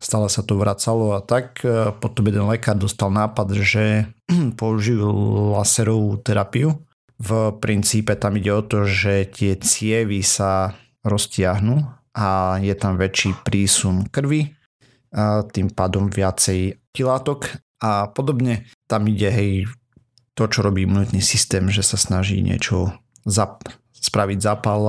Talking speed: 130 wpm